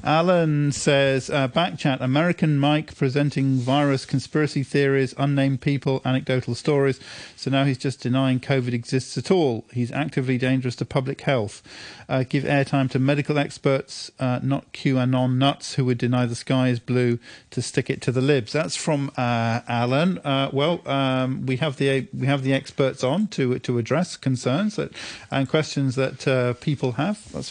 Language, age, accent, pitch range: English, 40-59, British, 130-145 Hz